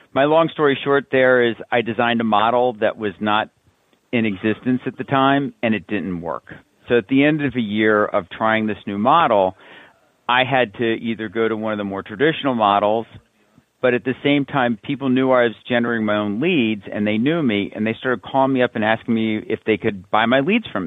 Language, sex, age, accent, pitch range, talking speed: English, male, 50-69, American, 105-125 Hz, 225 wpm